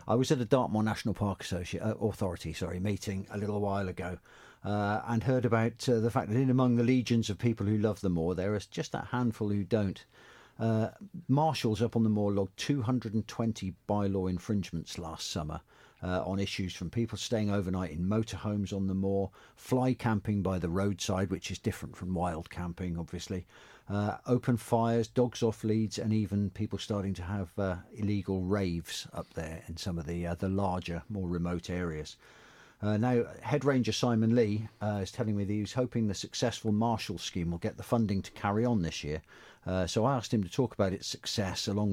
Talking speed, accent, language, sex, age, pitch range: 205 wpm, British, English, male, 50-69, 90-115 Hz